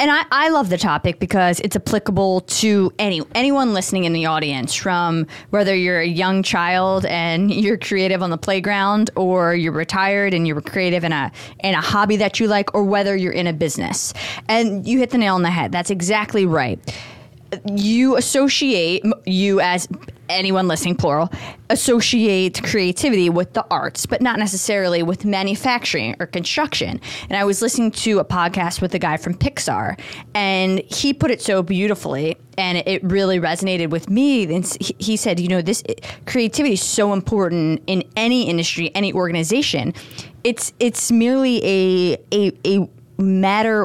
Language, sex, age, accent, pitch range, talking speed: English, female, 20-39, American, 170-210 Hz, 170 wpm